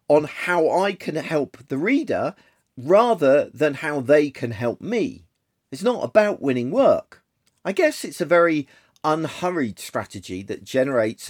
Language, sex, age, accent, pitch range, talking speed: English, male, 40-59, British, 115-155 Hz, 150 wpm